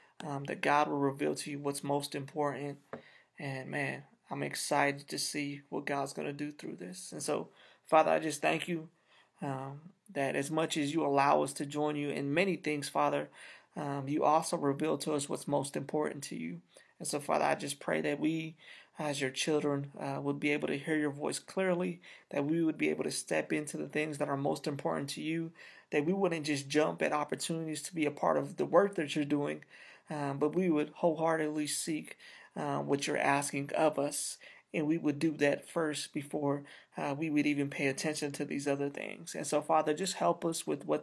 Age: 30-49